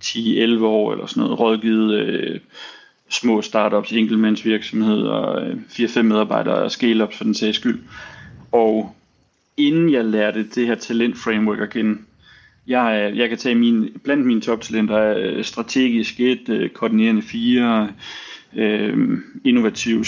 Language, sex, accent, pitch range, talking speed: Danish, male, native, 110-130 Hz, 125 wpm